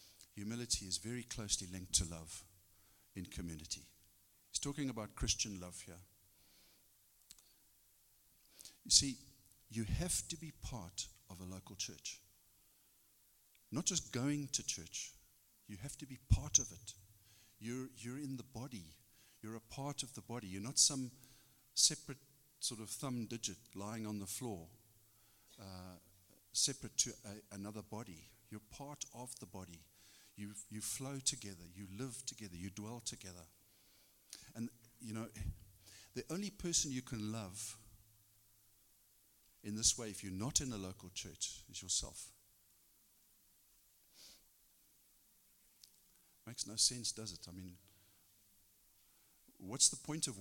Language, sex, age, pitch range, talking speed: English, male, 50-69, 95-125 Hz, 135 wpm